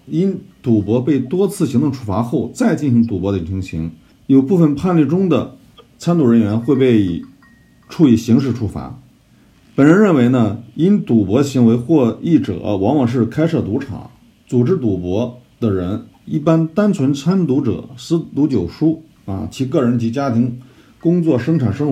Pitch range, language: 110-150 Hz, Chinese